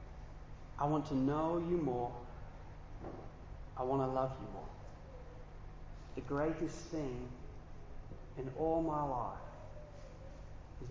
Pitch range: 135-200 Hz